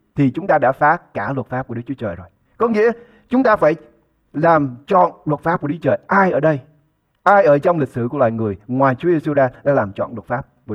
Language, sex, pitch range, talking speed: English, male, 130-180 Hz, 270 wpm